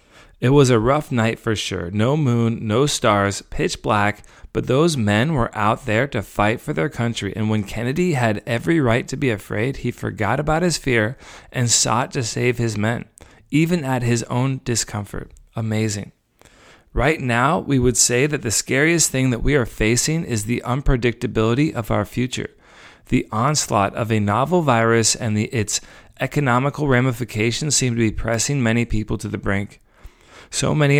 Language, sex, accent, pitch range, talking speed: English, male, American, 110-140 Hz, 175 wpm